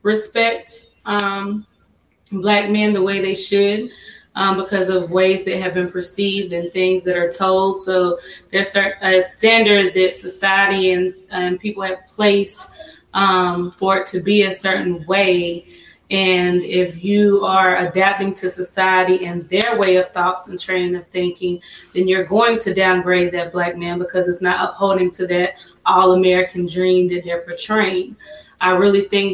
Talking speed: 160 wpm